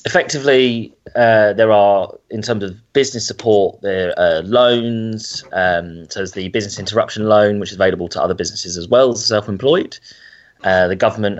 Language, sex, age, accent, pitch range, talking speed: English, male, 20-39, British, 90-110 Hz, 165 wpm